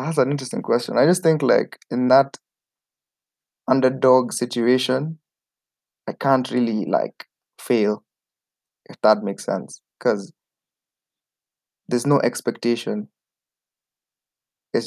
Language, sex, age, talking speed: English, male, 20-39, 105 wpm